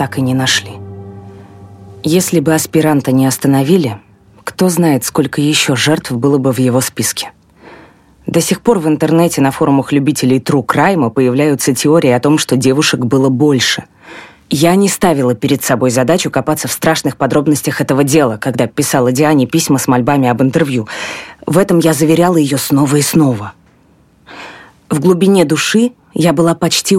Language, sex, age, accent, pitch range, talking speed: Russian, female, 20-39, native, 130-165 Hz, 160 wpm